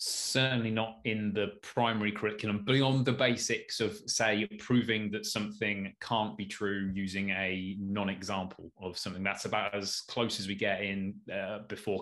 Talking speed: 165 wpm